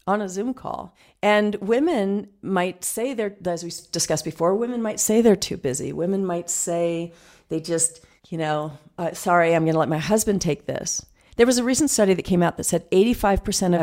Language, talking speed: English, 205 wpm